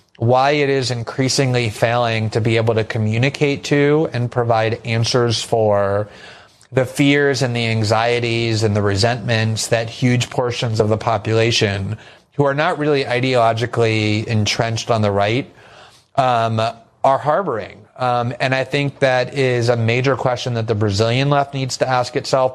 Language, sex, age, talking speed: English, male, 30-49, 155 wpm